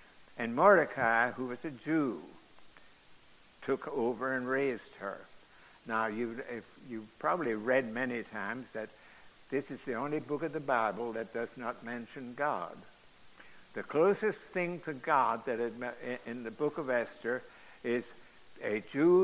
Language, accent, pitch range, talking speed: English, American, 120-155 Hz, 150 wpm